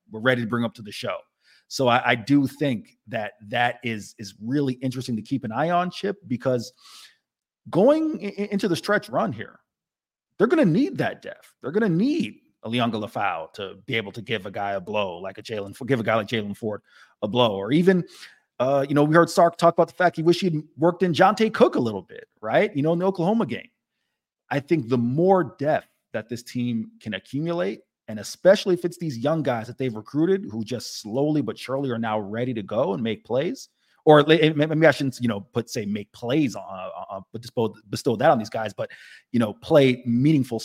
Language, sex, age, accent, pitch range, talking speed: English, male, 30-49, American, 115-170 Hz, 220 wpm